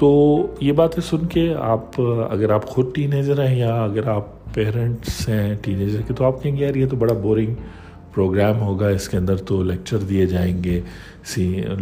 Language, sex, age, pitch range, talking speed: Urdu, male, 50-69, 90-115 Hz, 200 wpm